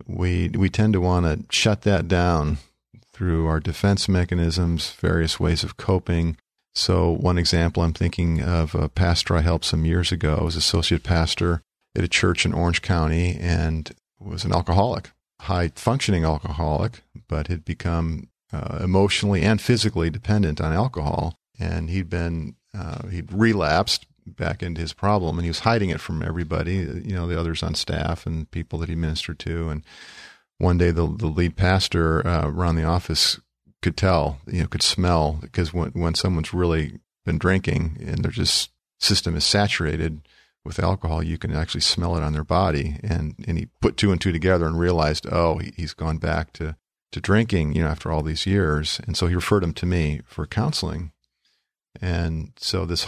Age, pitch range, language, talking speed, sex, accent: 50-69, 80-95 Hz, English, 180 wpm, male, American